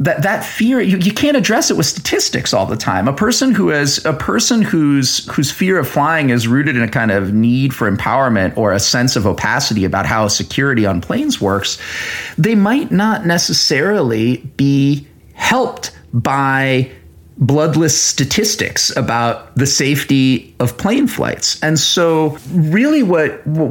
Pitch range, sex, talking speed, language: 125-190 Hz, male, 160 wpm, English